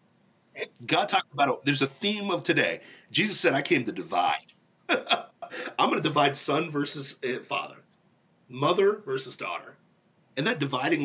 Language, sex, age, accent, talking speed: English, male, 50-69, American, 150 wpm